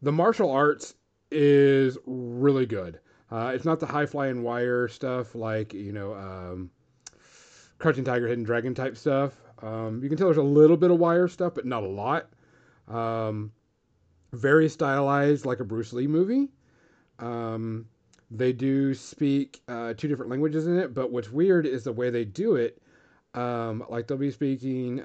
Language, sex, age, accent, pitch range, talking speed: English, male, 30-49, American, 110-140 Hz, 170 wpm